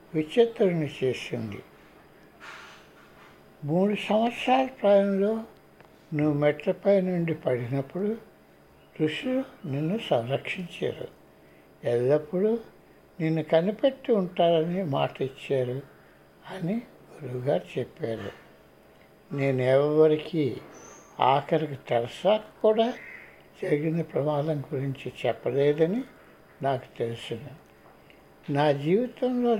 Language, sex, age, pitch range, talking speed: Telugu, male, 60-79, 120-190 Hz, 70 wpm